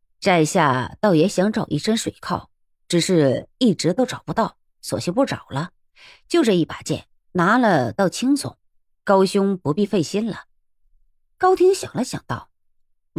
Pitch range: 155-240 Hz